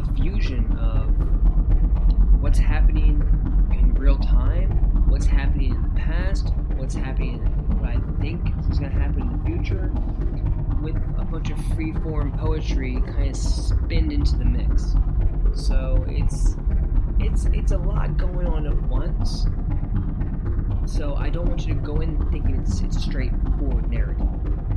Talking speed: 155 wpm